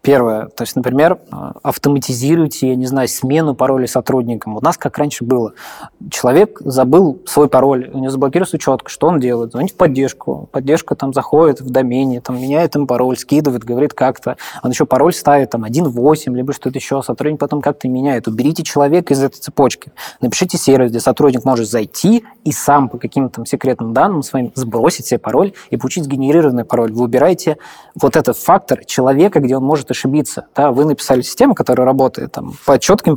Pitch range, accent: 125-155 Hz, native